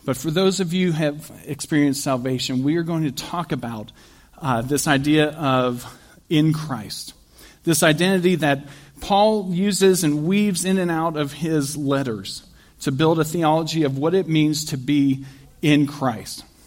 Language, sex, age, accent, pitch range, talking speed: English, male, 40-59, American, 135-170 Hz, 165 wpm